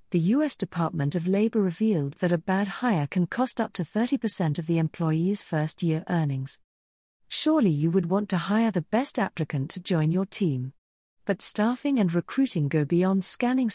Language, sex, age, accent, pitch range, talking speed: English, female, 50-69, British, 155-215 Hz, 175 wpm